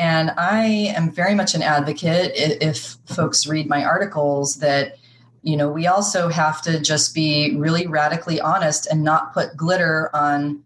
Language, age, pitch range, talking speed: English, 30-49, 155-200 Hz, 165 wpm